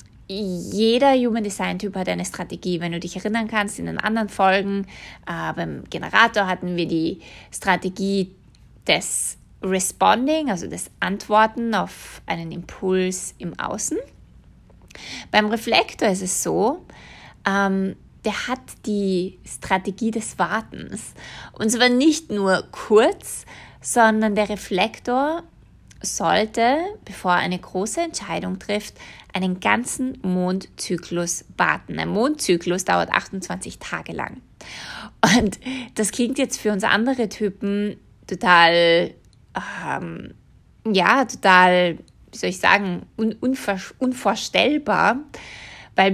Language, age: German, 20-39